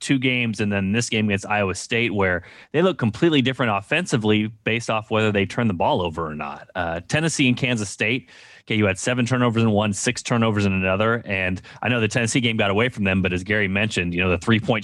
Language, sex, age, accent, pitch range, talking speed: English, male, 30-49, American, 105-140 Hz, 245 wpm